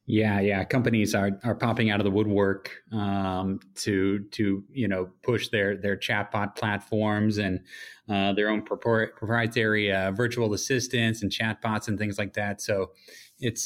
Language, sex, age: English, male, 30-49